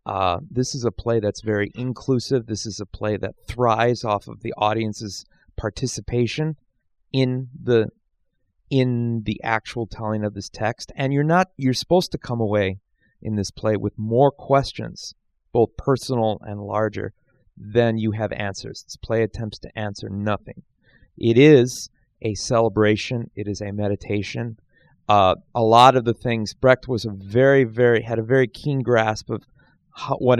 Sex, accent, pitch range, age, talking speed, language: male, American, 105-125 Hz, 30-49, 160 wpm, English